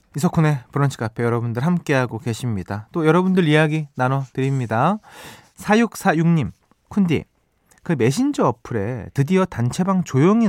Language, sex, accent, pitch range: Korean, male, native, 120-185 Hz